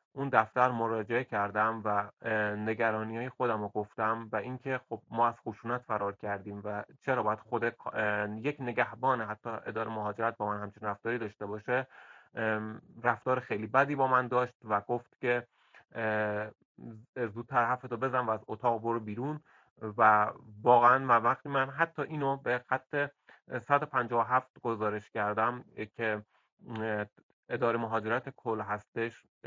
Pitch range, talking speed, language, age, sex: 110-125 Hz, 140 wpm, English, 30-49, male